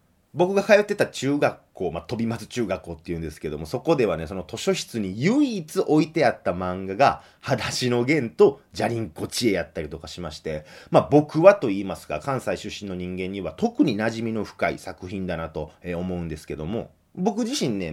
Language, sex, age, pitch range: Japanese, male, 30-49, 85-140 Hz